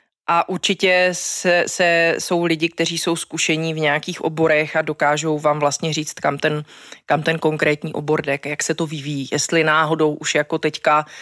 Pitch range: 155-170 Hz